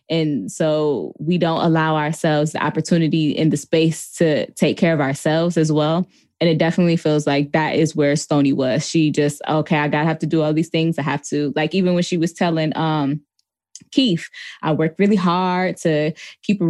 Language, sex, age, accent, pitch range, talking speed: English, female, 10-29, American, 155-180 Hz, 205 wpm